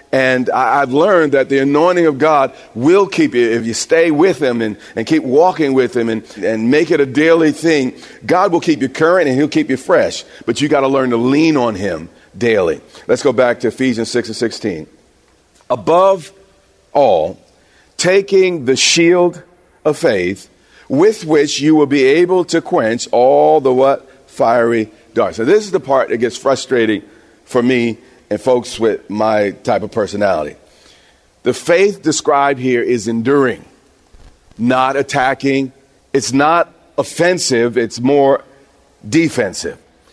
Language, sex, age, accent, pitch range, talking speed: English, male, 50-69, American, 125-160 Hz, 160 wpm